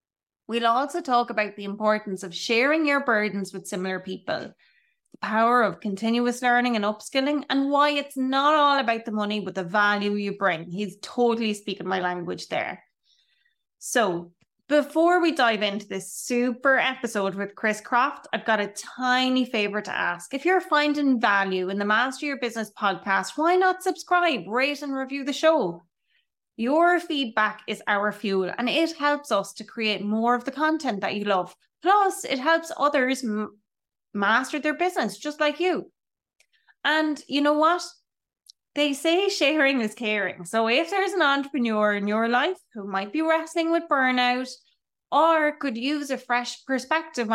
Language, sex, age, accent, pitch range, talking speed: English, female, 20-39, Irish, 210-295 Hz, 165 wpm